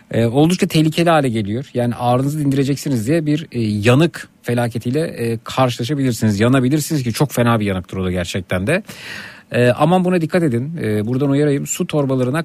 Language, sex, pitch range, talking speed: Turkish, male, 120-155 Hz, 165 wpm